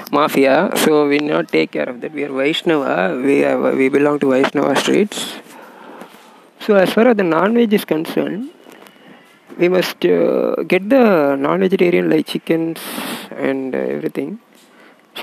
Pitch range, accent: 145-190 Hz, native